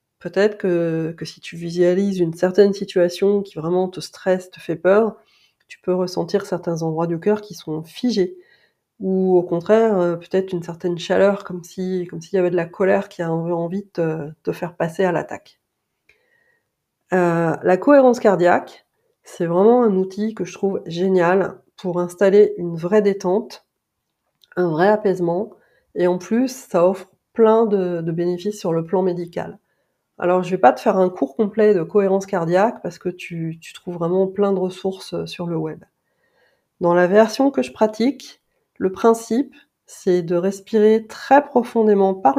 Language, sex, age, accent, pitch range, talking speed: French, female, 40-59, French, 180-220 Hz, 170 wpm